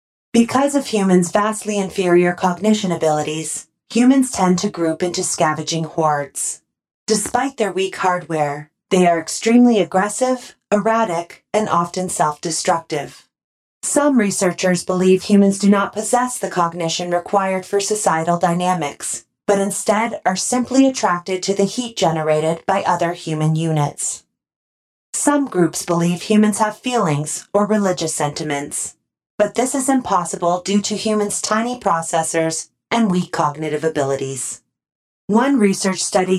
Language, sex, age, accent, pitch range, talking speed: English, female, 30-49, American, 165-210 Hz, 125 wpm